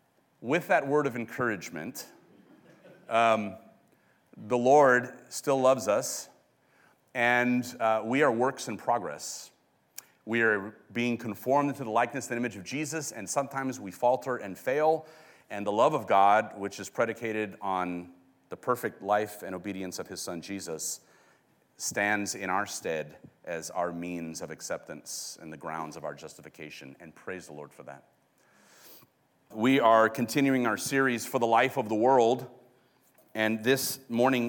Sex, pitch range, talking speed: male, 100-125 Hz, 155 wpm